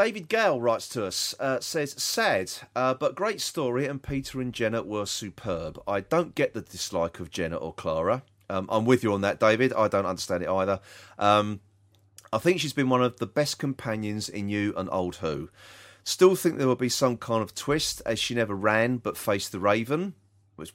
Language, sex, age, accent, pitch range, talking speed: English, male, 40-59, British, 100-130 Hz, 210 wpm